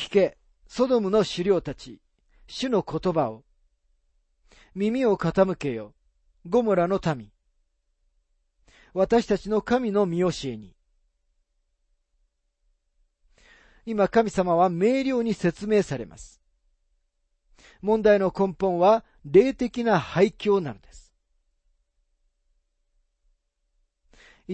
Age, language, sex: 40-59, Japanese, male